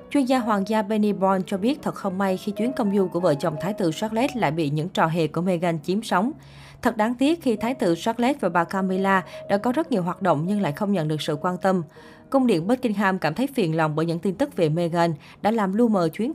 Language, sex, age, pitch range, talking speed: Vietnamese, female, 20-39, 170-225 Hz, 265 wpm